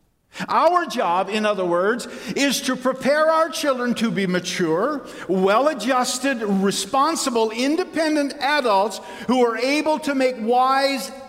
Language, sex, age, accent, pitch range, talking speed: English, male, 50-69, American, 200-275 Hz, 120 wpm